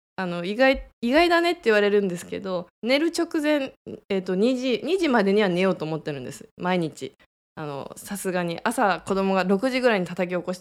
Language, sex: Japanese, female